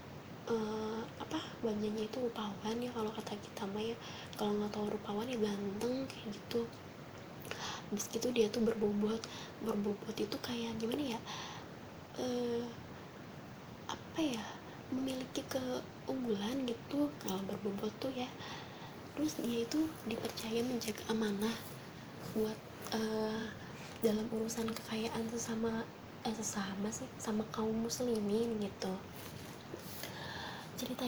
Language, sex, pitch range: Indonesian, female, 215-245 Hz